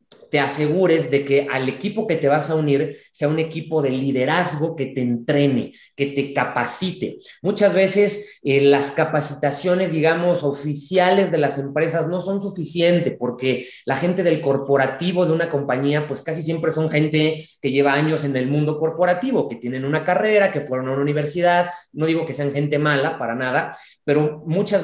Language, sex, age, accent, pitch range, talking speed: Spanish, male, 30-49, Mexican, 140-175 Hz, 180 wpm